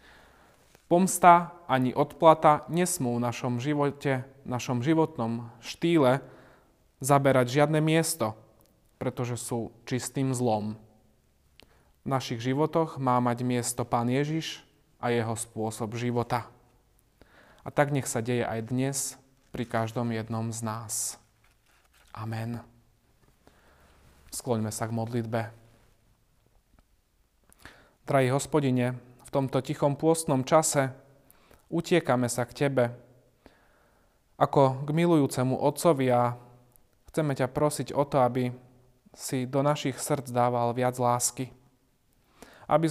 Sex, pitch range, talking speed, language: male, 120-145 Hz, 105 wpm, Slovak